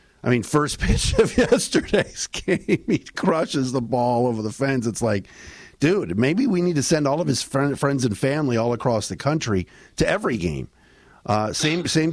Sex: male